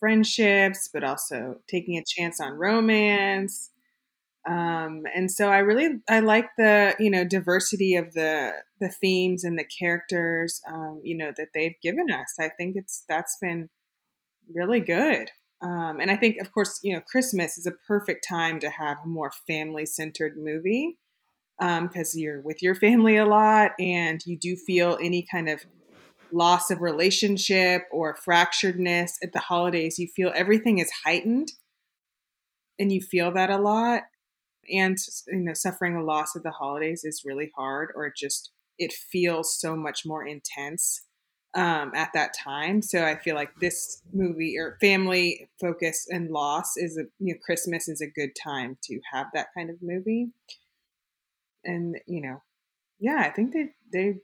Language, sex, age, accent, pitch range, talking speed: English, female, 20-39, American, 160-195 Hz, 170 wpm